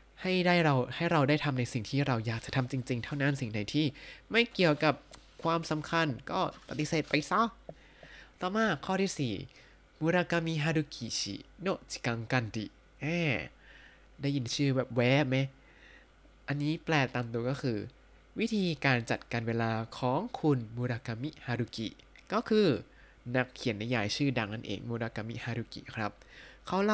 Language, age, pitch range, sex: Thai, 20-39, 120-155 Hz, male